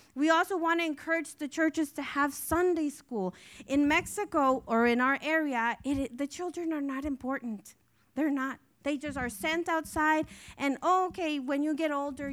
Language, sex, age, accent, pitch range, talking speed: English, female, 30-49, American, 230-310 Hz, 170 wpm